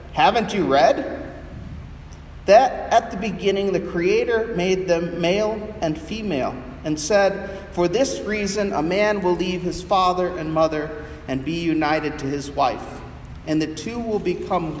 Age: 40-59